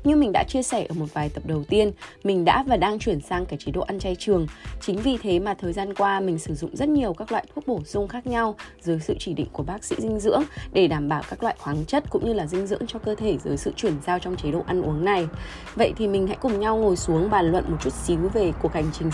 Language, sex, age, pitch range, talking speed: Vietnamese, female, 20-39, 160-210 Hz, 290 wpm